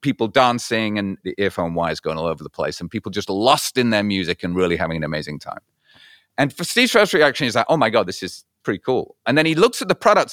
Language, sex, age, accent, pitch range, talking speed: English, male, 30-49, British, 100-135 Hz, 255 wpm